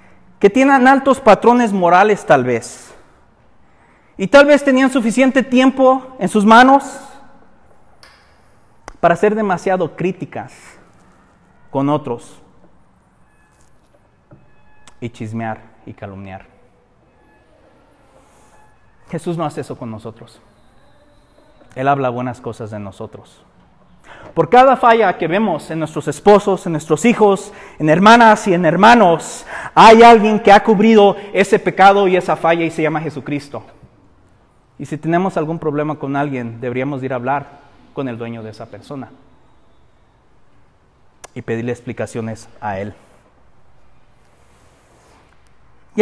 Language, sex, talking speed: Spanish, male, 120 wpm